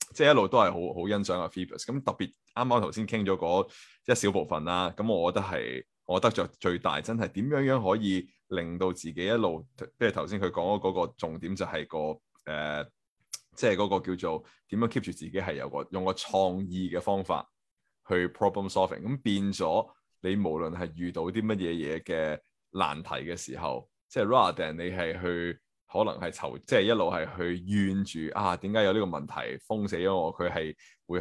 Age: 20-39